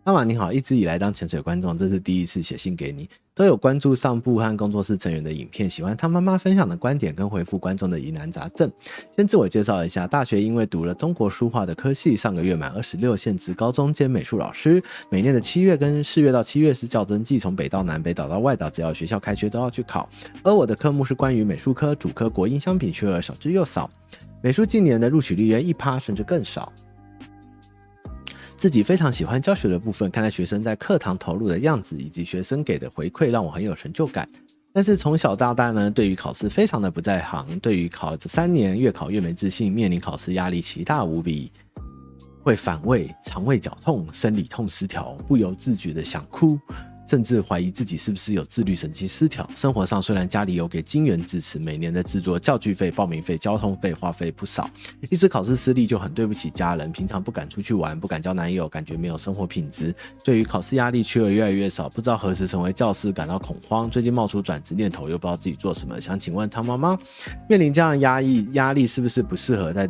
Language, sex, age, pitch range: Chinese, male, 30-49, 90-135 Hz